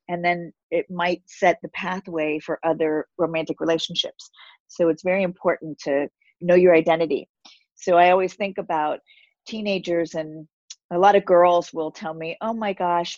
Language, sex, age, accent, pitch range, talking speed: English, female, 40-59, American, 165-200 Hz, 165 wpm